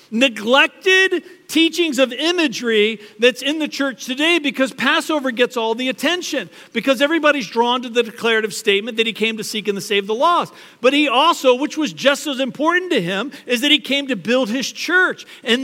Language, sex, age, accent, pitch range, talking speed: English, male, 50-69, American, 180-260 Hz, 195 wpm